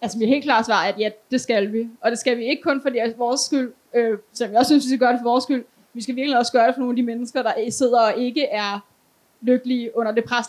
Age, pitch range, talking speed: 20-39, 230-265 Hz, 315 wpm